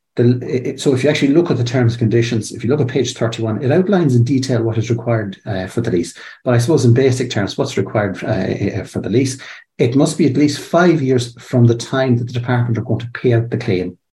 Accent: Irish